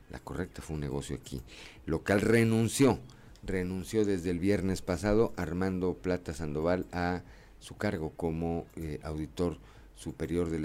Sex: male